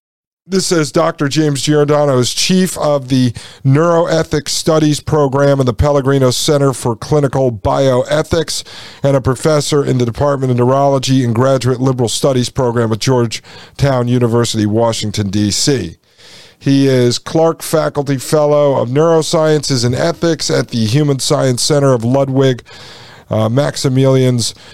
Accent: American